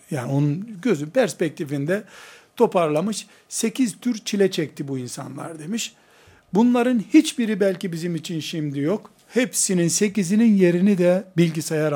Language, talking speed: Turkish, 120 wpm